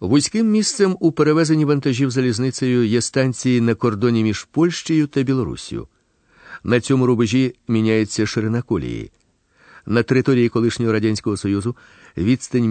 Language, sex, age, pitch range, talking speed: Ukrainian, male, 50-69, 110-155 Hz, 125 wpm